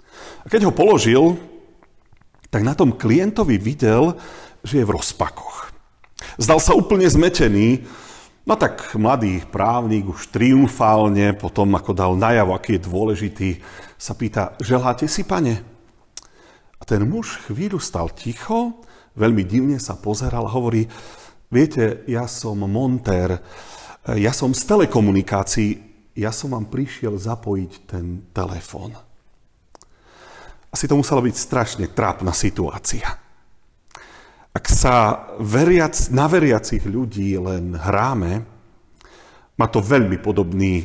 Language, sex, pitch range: Slovak, male, 100-125 Hz